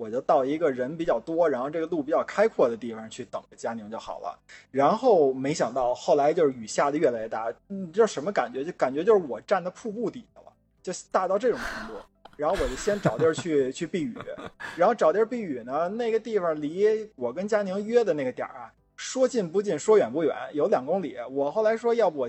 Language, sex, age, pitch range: Chinese, male, 20-39, 150-225 Hz